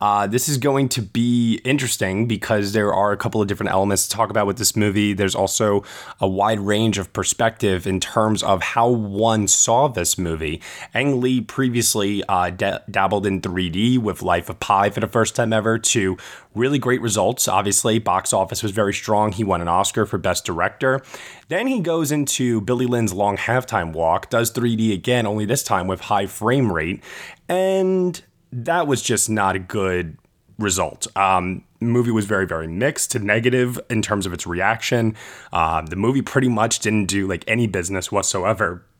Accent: American